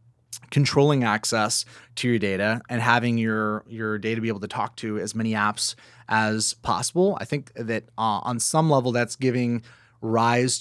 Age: 30-49